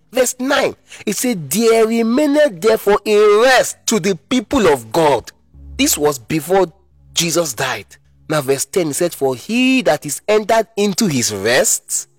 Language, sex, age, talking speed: English, male, 30-49, 160 wpm